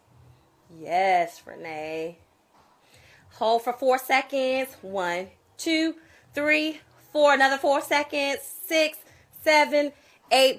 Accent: American